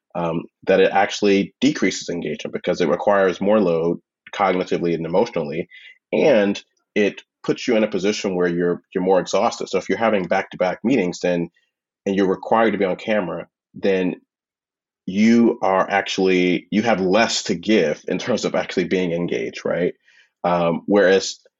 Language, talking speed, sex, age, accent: English, 165 wpm, male, 30-49, American